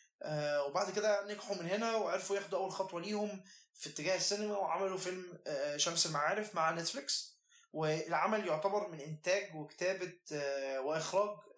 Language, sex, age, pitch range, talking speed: Arabic, male, 20-39, 165-210 Hz, 130 wpm